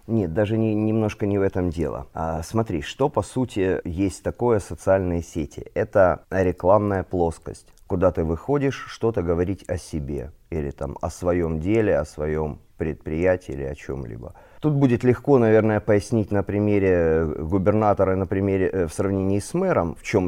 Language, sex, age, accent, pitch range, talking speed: Ukrainian, male, 30-49, native, 85-110 Hz, 150 wpm